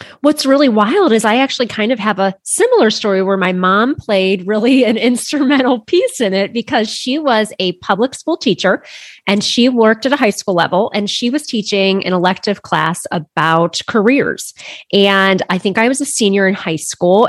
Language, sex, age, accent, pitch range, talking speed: English, female, 30-49, American, 185-240 Hz, 195 wpm